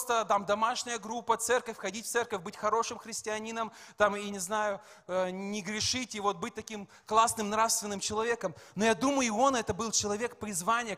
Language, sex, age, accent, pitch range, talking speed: Russian, male, 20-39, native, 210-245 Hz, 175 wpm